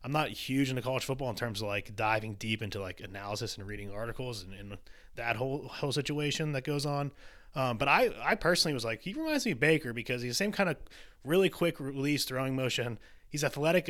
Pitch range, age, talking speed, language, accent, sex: 115-150 Hz, 20-39, 225 wpm, English, American, male